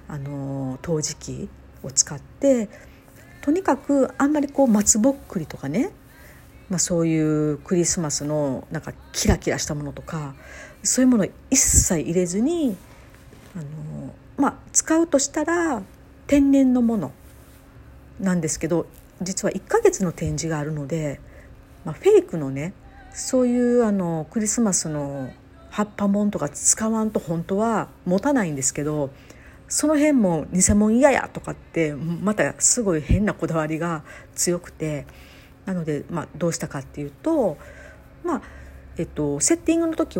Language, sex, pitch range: Japanese, female, 145-225 Hz